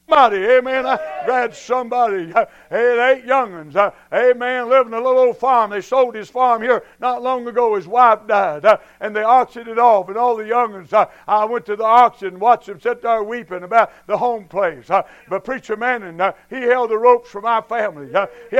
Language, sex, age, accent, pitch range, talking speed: English, male, 60-79, American, 215-255 Hz, 195 wpm